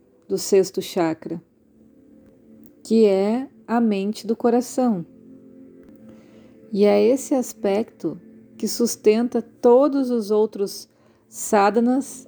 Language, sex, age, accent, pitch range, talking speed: Portuguese, female, 40-59, Brazilian, 180-225 Hz, 95 wpm